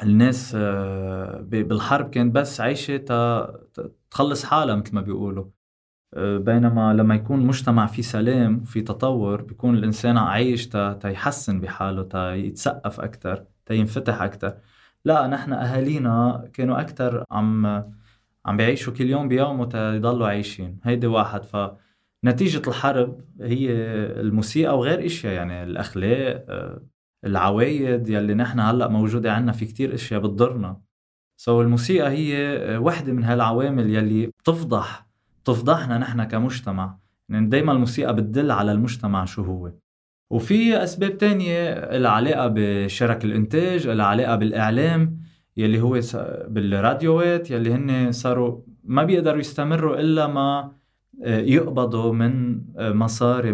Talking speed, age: 115 wpm, 20-39